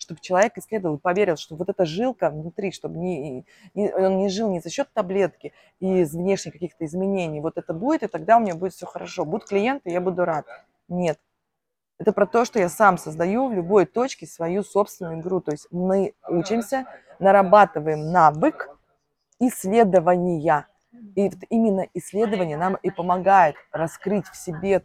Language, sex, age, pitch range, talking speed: Russian, female, 20-39, 165-200 Hz, 170 wpm